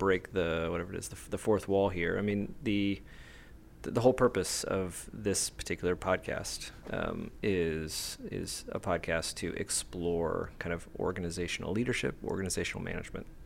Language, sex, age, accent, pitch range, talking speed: English, male, 30-49, American, 85-105 Hz, 145 wpm